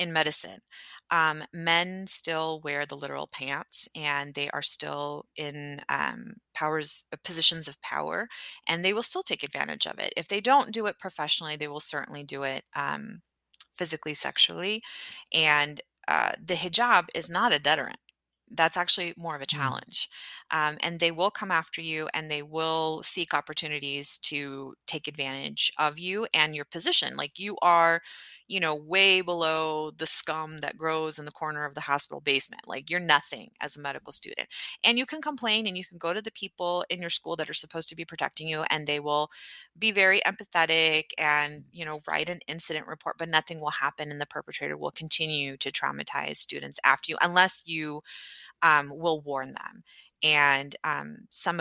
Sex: female